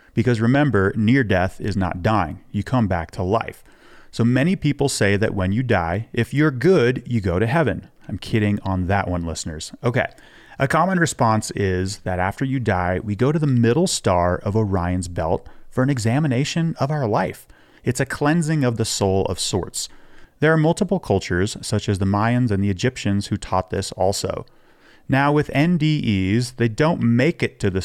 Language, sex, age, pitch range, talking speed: English, male, 30-49, 95-130 Hz, 190 wpm